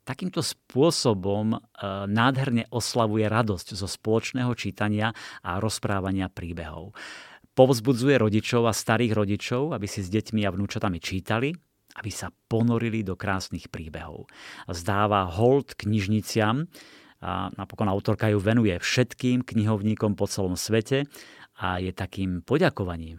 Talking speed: 120 wpm